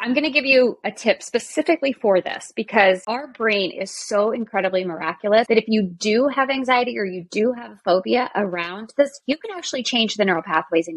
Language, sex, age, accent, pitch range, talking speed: English, female, 20-39, American, 190-245 Hz, 215 wpm